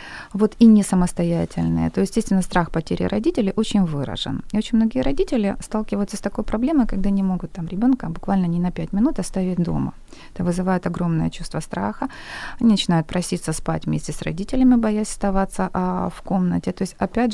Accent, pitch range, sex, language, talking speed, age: native, 170-215 Hz, female, Ukrainian, 180 wpm, 30-49